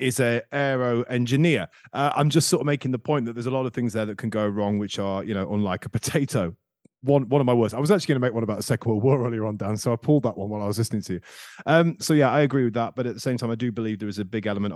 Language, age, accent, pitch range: English, 30-49, British, 95-125 Hz